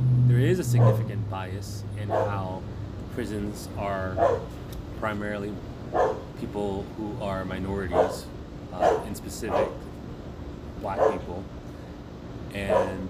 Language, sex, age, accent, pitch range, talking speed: English, male, 30-49, American, 90-105 Hz, 90 wpm